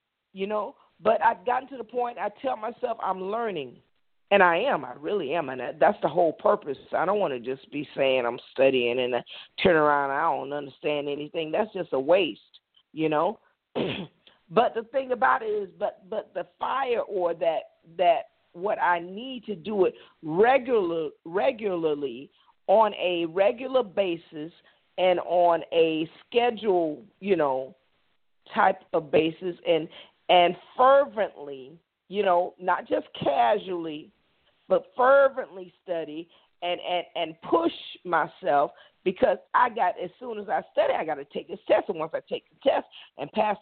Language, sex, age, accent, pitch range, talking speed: English, female, 40-59, American, 170-250 Hz, 165 wpm